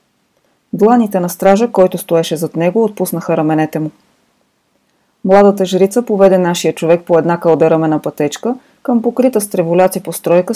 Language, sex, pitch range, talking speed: Bulgarian, female, 165-205 Hz, 135 wpm